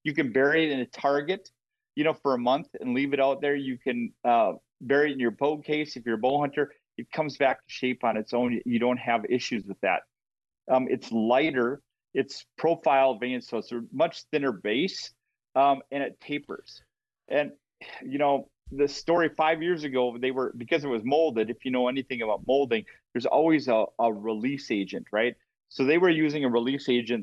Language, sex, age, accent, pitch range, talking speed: English, male, 40-59, American, 120-140 Hz, 210 wpm